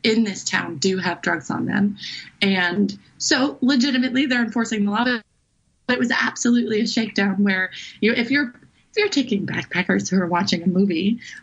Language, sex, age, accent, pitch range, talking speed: English, female, 20-39, American, 195-240 Hz, 175 wpm